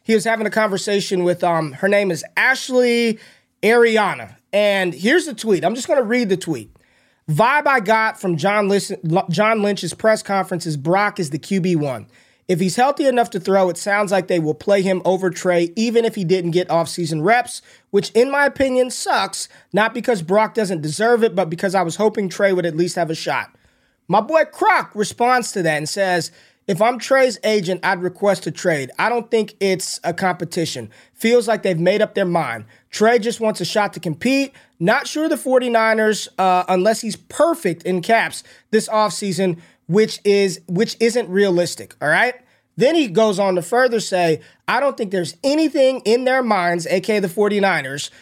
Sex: male